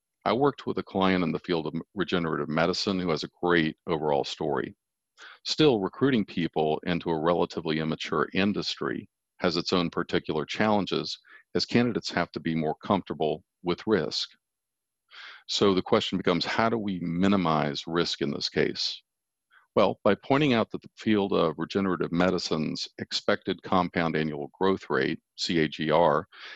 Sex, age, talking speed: male, 50-69, 150 wpm